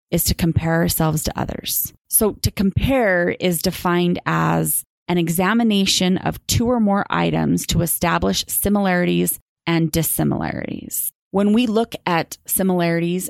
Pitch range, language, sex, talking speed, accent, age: 160-185 Hz, English, female, 130 wpm, American, 20-39